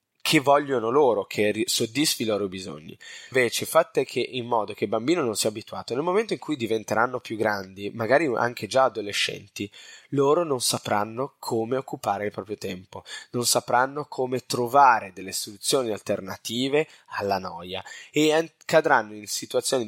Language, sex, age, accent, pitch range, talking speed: Italian, male, 20-39, native, 105-140 Hz, 150 wpm